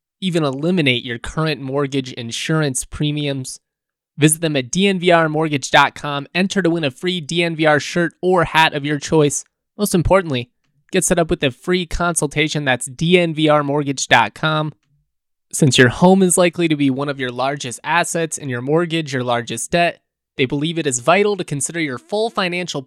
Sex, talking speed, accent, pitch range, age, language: male, 165 wpm, American, 140-165 Hz, 20-39, English